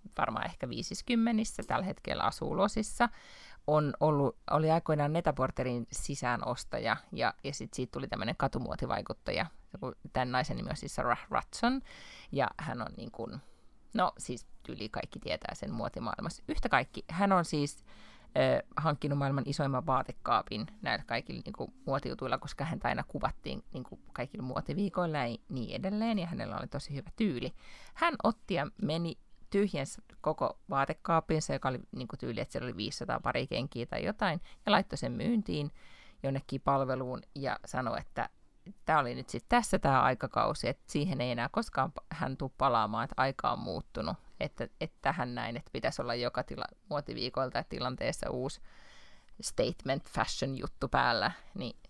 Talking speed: 155 wpm